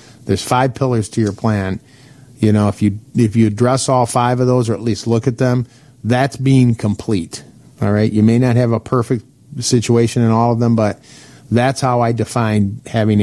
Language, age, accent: English, 40-59, American